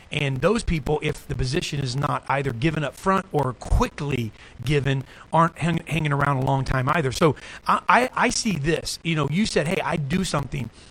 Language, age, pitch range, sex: English, 40-59, 140-180 Hz, male